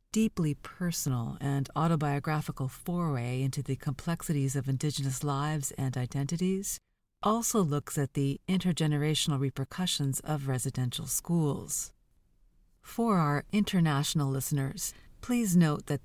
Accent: American